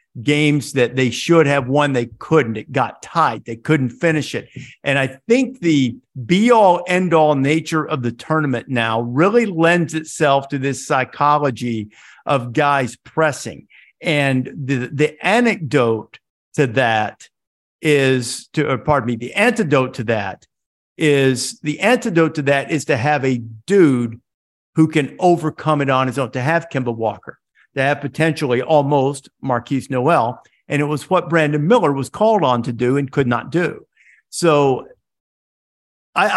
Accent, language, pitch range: American, English, 135-155 Hz